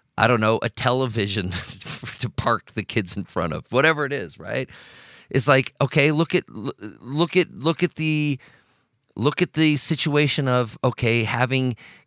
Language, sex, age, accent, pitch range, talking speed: English, male, 40-59, American, 120-145 Hz, 165 wpm